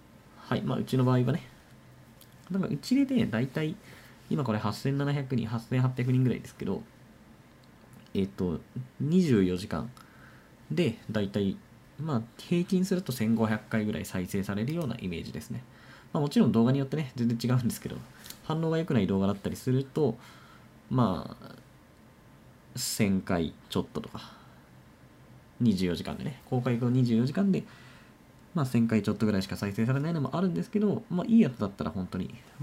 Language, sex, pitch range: Japanese, male, 105-140 Hz